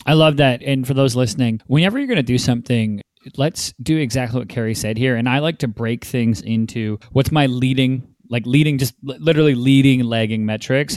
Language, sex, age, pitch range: English, male, 30-49, 115-140 Hz